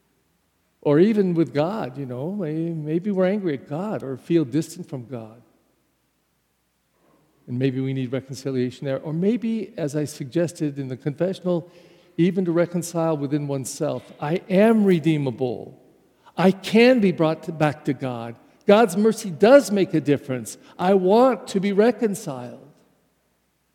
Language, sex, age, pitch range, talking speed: English, male, 50-69, 145-185 Hz, 140 wpm